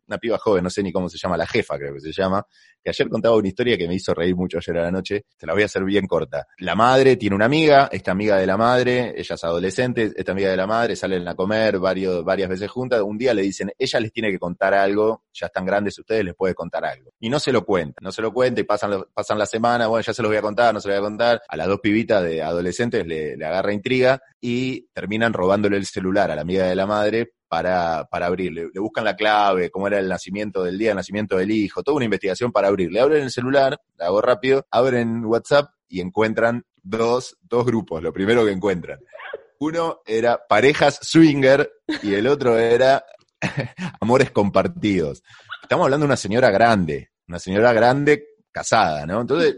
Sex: male